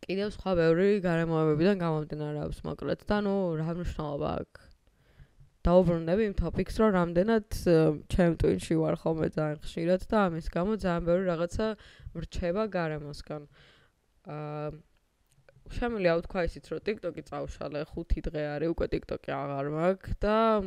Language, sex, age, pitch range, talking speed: English, female, 20-39, 160-195 Hz, 85 wpm